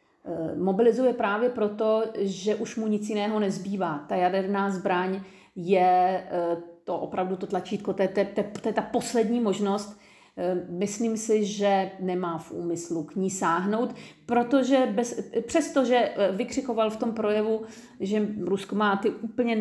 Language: Czech